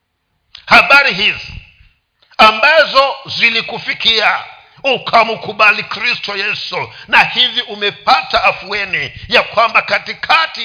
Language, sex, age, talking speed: Swahili, male, 50-69, 80 wpm